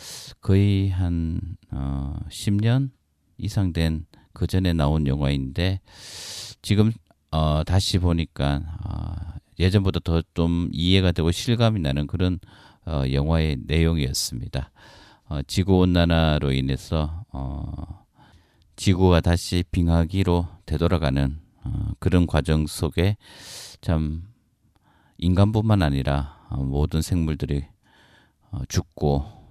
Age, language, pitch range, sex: 40-59, Korean, 75-95 Hz, male